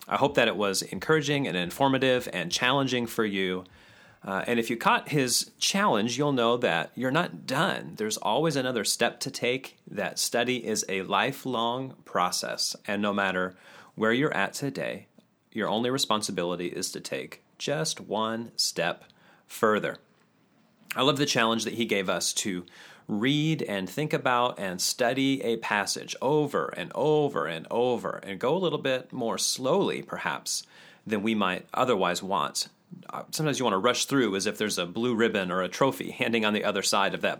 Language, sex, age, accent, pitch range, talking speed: English, male, 30-49, American, 100-130 Hz, 180 wpm